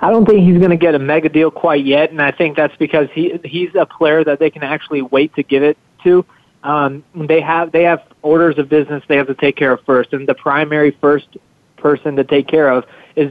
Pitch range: 145-165 Hz